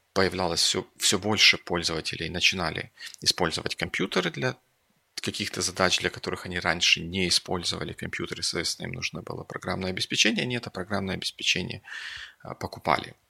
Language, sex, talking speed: English, male, 130 wpm